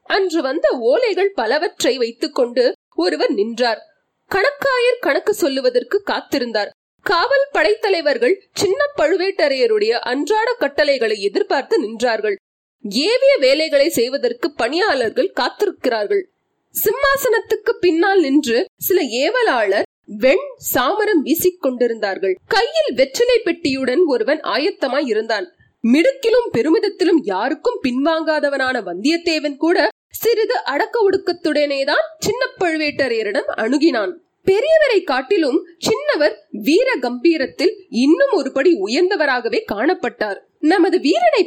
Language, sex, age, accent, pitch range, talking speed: Tamil, female, 30-49, native, 285-405 Hz, 75 wpm